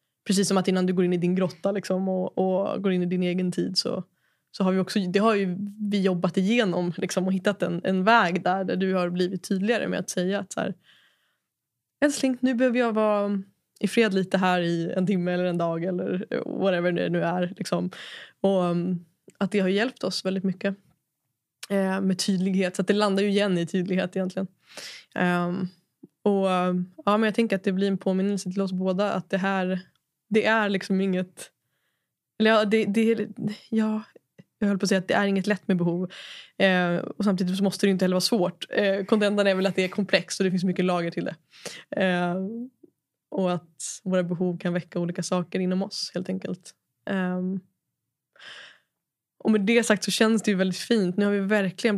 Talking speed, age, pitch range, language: 210 wpm, 20-39, 180-205 Hz, Swedish